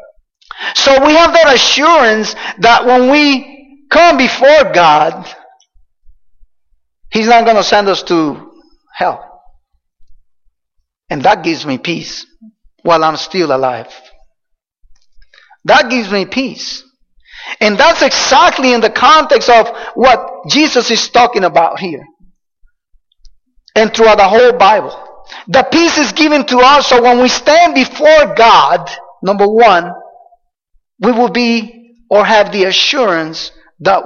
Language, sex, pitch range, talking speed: English, male, 200-290 Hz, 125 wpm